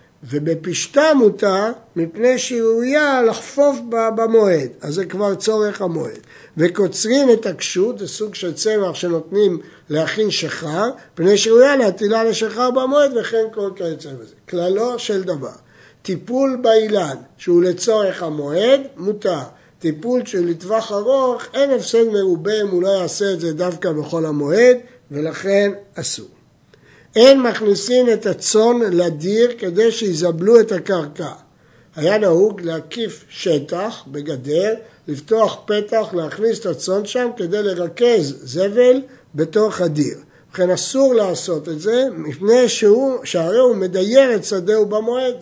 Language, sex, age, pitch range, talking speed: Hebrew, male, 60-79, 175-235 Hz, 125 wpm